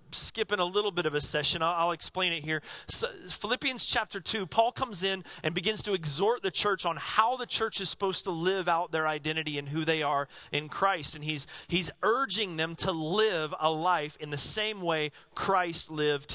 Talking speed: 210 wpm